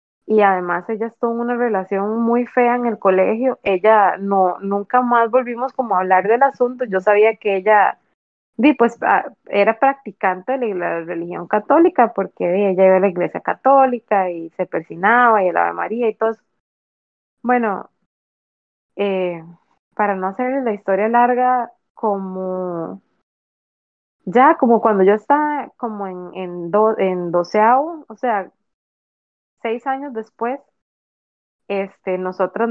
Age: 20-39